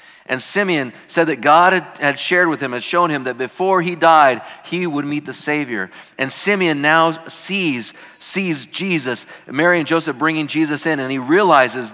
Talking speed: 180 wpm